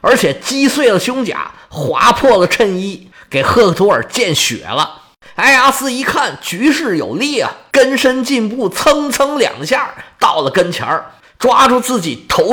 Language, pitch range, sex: Chinese, 170-270 Hz, male